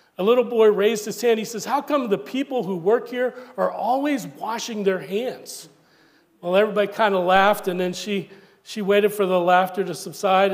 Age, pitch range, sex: 40-59, 180-220 Hz, male